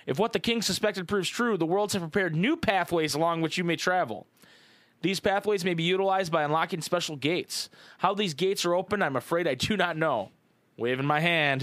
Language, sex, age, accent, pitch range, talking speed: English, male, 20-39, American, 155-195 Hz, 210 wpm